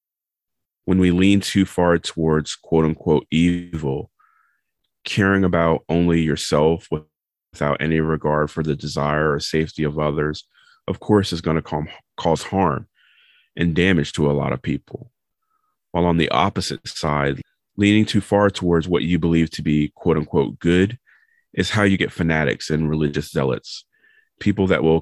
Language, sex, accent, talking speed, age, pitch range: English, male, American, 155 wpm, 30-49, 75-95 Hz